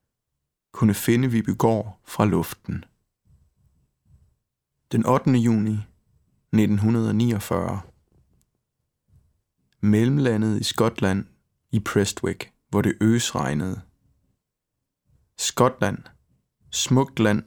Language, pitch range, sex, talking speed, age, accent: Danish, 100-115 Hz, male, 70 wpm, 20-39, native